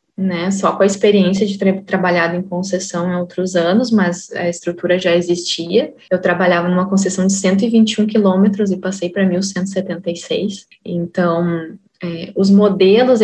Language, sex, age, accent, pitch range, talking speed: Portuguese, female, 10-29, Brazilian, 175-205 Hz, 150 wpm